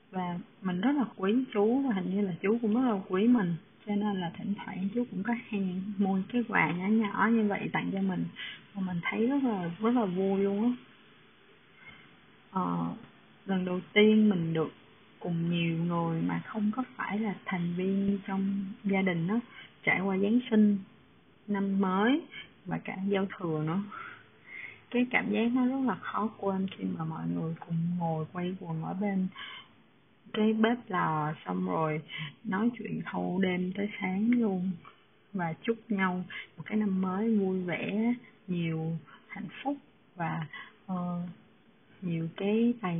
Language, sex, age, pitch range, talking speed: Vietnamese, female, 20-39, 175-215 Hz, 170 wpm